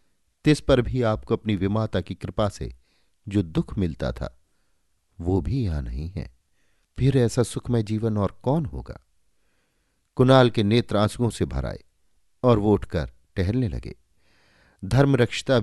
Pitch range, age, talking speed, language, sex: 80-110 Hz, 50-69, 140 wpm, Hindi, male